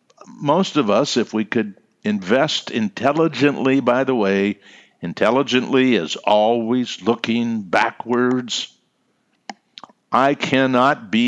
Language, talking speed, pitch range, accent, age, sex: English, 100 wpm, 100-130 Hz, American, 60-79, male